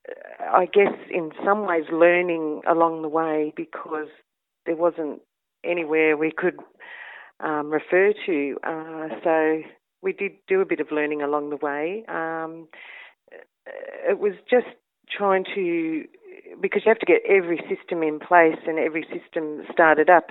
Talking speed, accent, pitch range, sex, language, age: 150 wpm, Australian, 155-195 Hz, female, English, 40-59